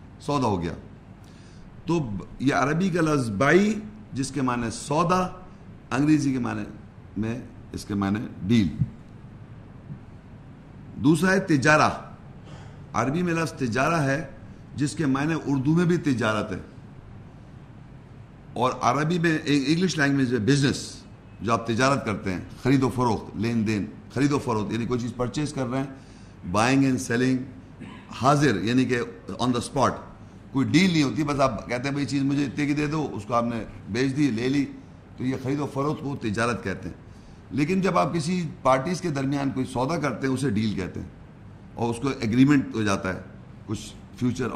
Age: 50-69